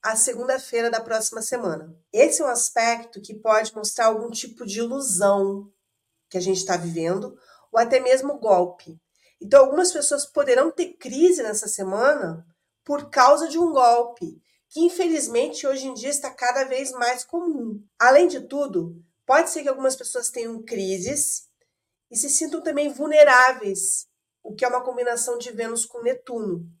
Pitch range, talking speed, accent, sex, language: 215-285 Hz, 160 wpm, Brazilian, female, Portuguese